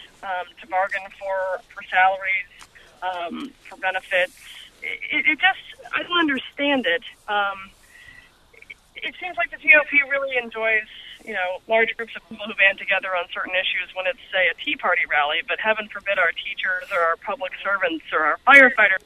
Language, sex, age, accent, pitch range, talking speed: English, female, 20-39, American, 185-265 Hz, 180 wpm